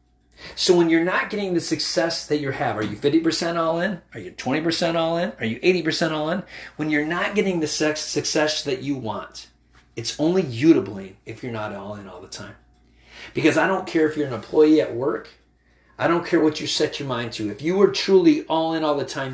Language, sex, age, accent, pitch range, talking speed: English, male, 30-49, American, 110-160 Hz, 235 wpm